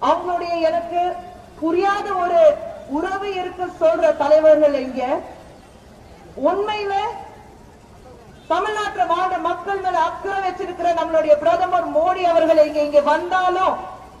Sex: female